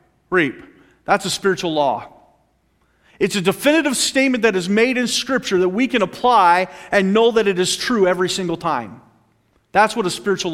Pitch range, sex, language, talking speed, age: 190-245 Hz, male, English, 175 wpm, 40-59